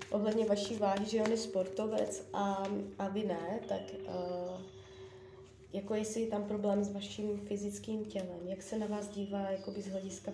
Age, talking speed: 20-39, 170 wpm